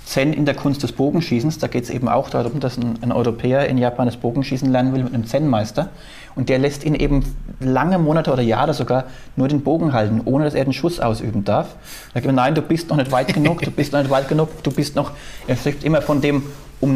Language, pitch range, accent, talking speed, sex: German, 125-145 Hz, German, 250 wpm, male